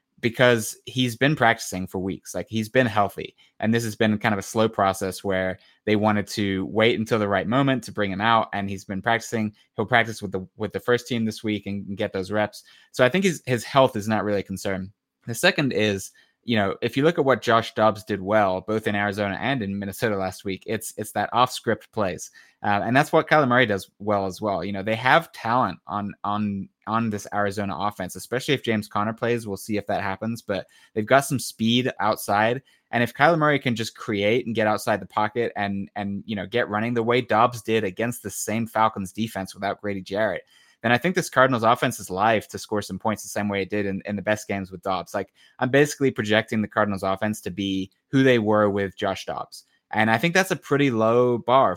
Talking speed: 235 wpm